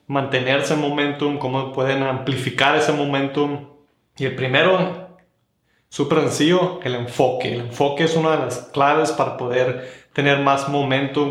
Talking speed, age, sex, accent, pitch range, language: 145 wpm, 20-39, male, Mexican, 130-155 Hz, Spanish